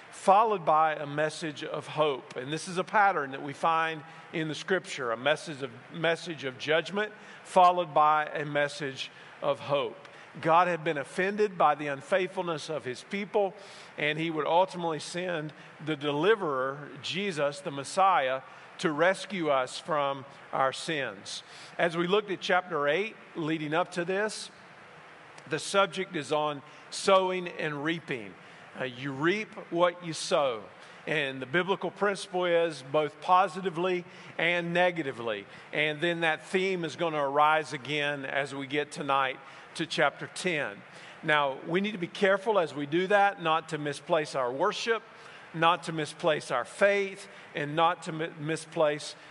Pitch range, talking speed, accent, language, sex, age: 145-180 Hz, 155 wpm, American, English, male, 50-69